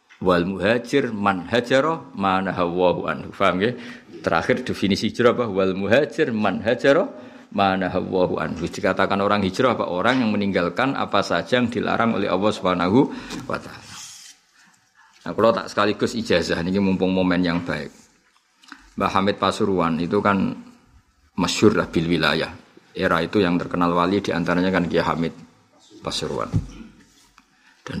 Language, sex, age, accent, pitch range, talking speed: Indonesian, male, 50-69, native, 90-120 Hz, 125 wpm